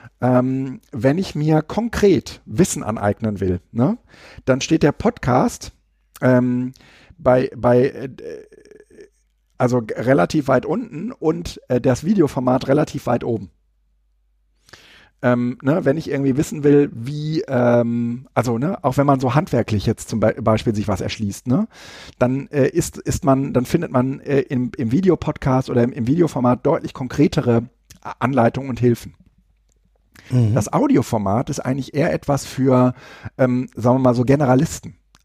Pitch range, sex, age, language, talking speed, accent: 115-140 Hz, male, 50-69, German, 135 wpm, German